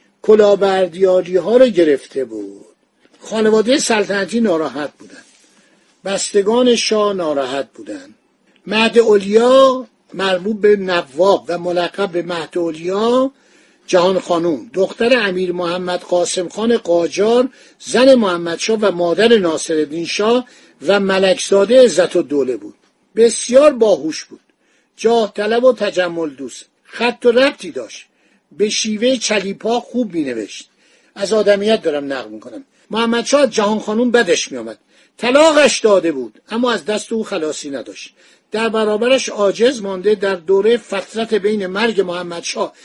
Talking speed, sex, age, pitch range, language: 125 wpm, male, 50-69, 185-235 Hz, Persian